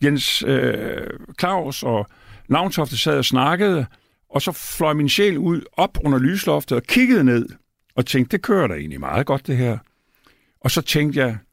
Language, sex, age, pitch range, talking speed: Danish, male, 50-69, 110-145 Hz, 175 wpm